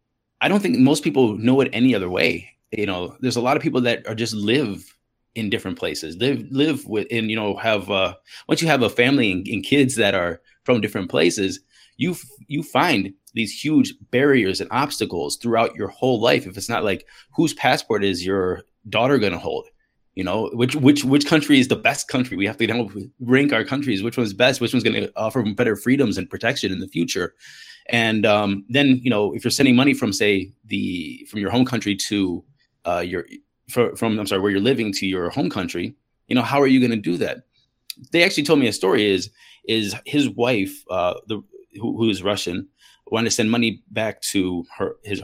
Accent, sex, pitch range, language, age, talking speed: American, male, 105-130 Hz, English, 20-39, 220 wpm